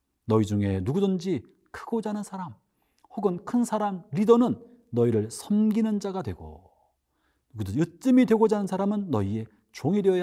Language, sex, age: Korean, male, 40-59